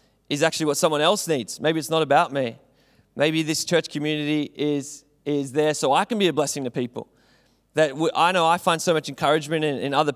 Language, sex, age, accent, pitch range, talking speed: English, male, 20-39, Australian, 140-165 Hz, 225 wpm